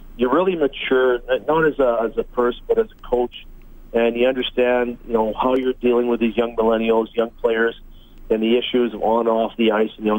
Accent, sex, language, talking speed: American, male, English, 225 wpm